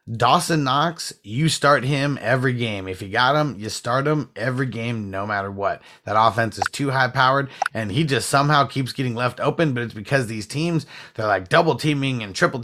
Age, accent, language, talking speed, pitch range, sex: 30-49, American, English, 210 wpm, 115-145 Hz, male